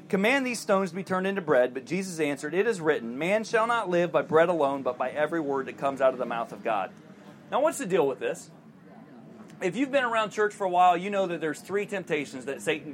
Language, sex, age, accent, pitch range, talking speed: English, male, 30-49, American, 170-225 Hz, 255 wpm